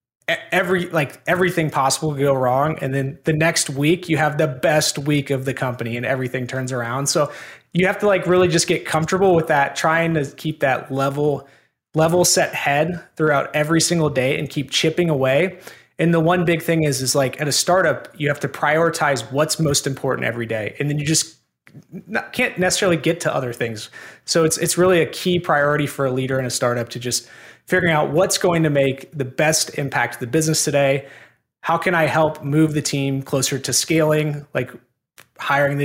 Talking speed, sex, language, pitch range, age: 205 wpm, male, English, 135-165 Hz, 20-39